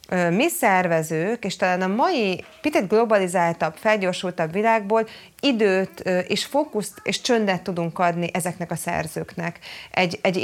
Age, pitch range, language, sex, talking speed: 30-49, 165-200 Hz, Hungarian, female, 125 wpm